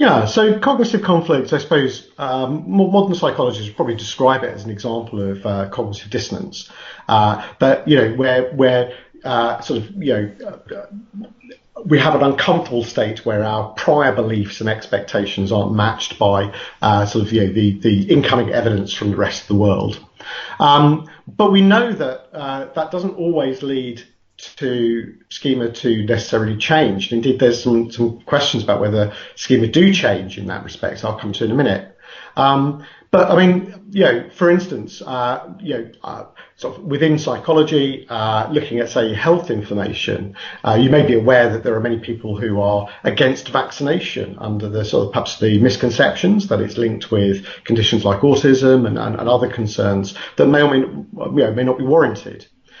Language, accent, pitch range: English, British, 105-145 Hz